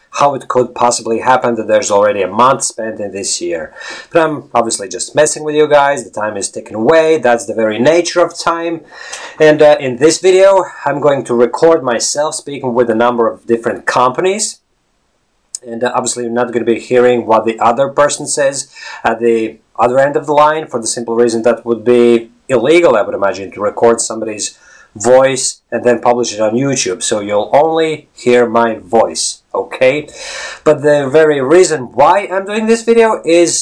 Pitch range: 120-160 Hz